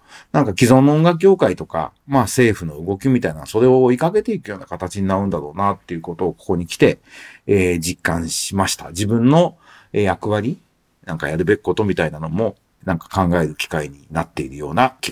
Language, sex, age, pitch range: Japanese, male, 50-69, 95-145 Hz